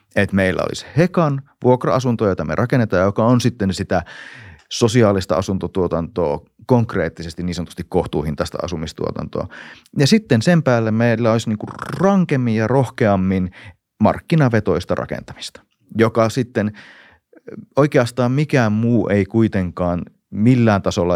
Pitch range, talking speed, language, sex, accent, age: 90-115 Hz, 115 wpm, Finnish, male, native, 30-49